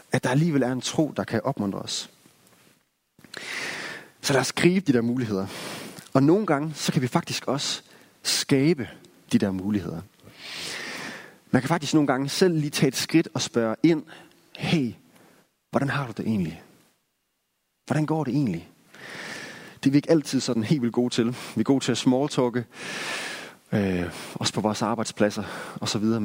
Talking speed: 165 wpm